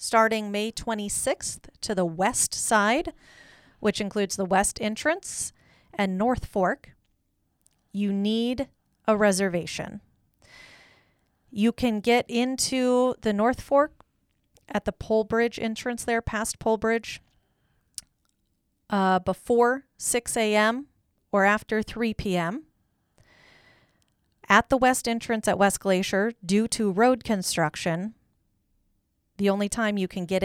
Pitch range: 180-225 Hz